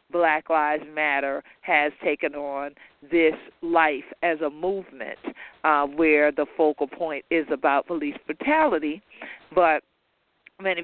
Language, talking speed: English, 120 wpm